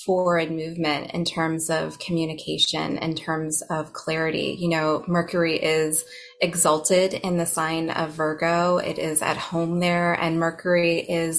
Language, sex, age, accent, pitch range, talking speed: English, female, 20-39, American, 160-185 Hz, 150 wpm